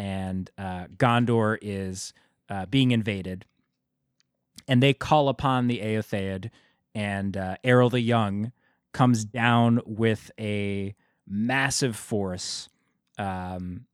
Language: English